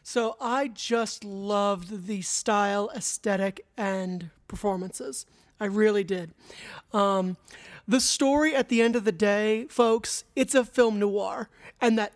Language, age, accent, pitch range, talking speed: English, 30-49, American, 205-245 Hz, 140 wpm